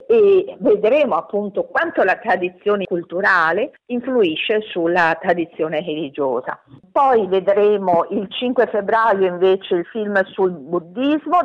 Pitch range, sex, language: 170-225 Hz, female, Italian